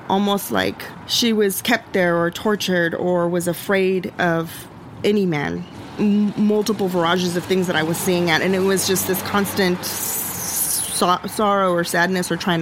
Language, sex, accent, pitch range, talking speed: English, female, American, 170-190 Hz, 160 wpm